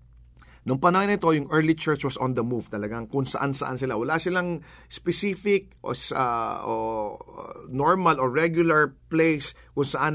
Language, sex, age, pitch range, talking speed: English, male, 40-59, 130-180 Hz, 160 wpm